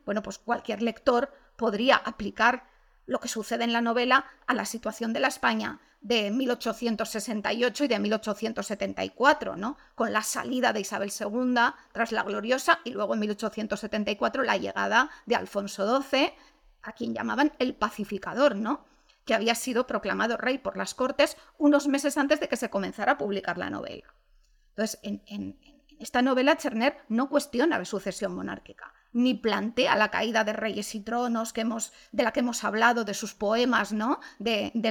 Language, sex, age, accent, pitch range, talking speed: Spanish, female, 40-59, Spanish, 215-270 Hz, 170 wpm